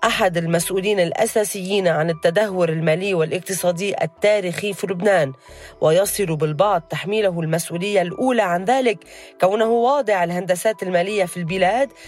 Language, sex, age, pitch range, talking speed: Arabic, female, 30-49, 170-225 Hz, 115 wpm